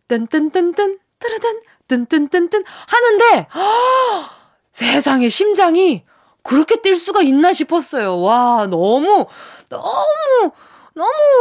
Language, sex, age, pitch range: Korean, female, 20-39, 215-350 Hz